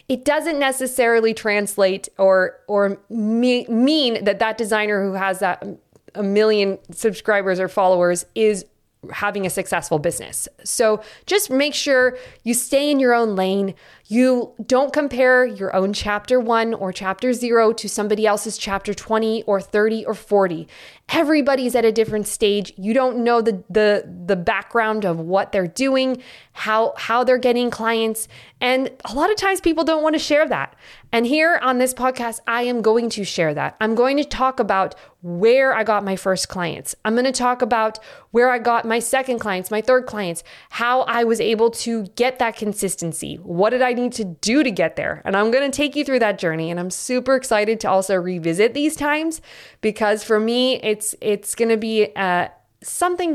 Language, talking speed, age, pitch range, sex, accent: English, 185 wpm, 20-39, 200-255 Hz, female, American